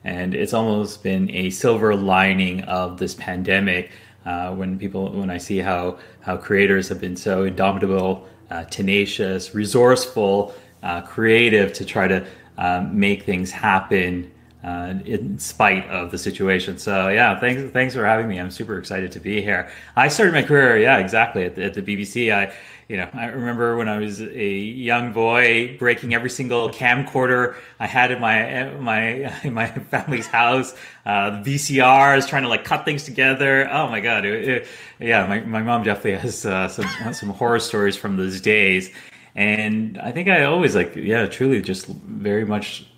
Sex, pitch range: male, 95-110 Hz